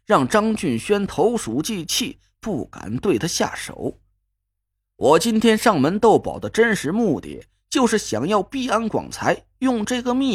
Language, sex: Chinese, male